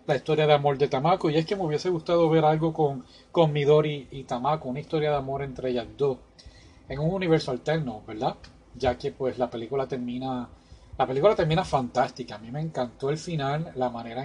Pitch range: 125-160 Hz